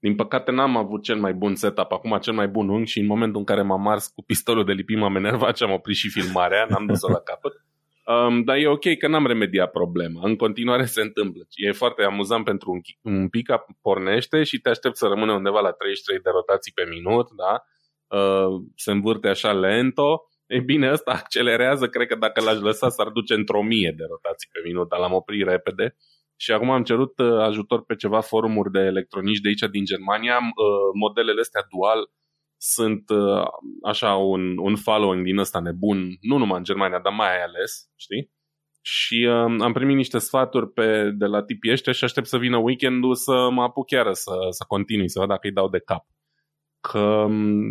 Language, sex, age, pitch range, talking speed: Romanian, male, 20-39, 100-125 Hz, 195 wpm